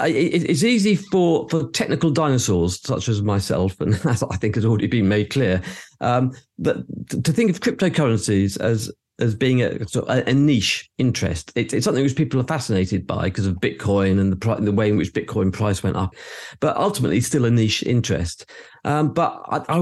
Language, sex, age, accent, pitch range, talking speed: English, male, 50-69, British, 105-145 Hz, 205 wpm